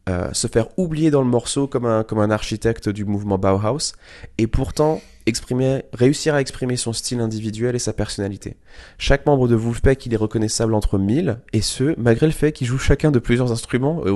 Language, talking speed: French, 205 wpm